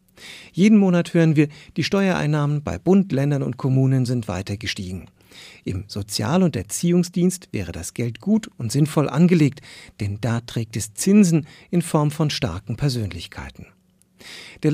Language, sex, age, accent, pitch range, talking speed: German, male, 50-69, German, 105-165 Hz, 145 wpm